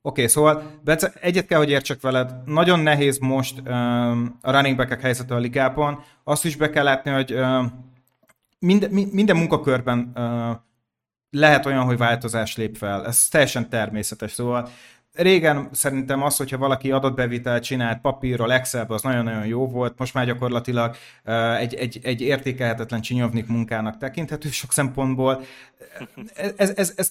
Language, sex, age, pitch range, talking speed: Hungarian, male, 30-49, 120-140 Hz, 130 wpm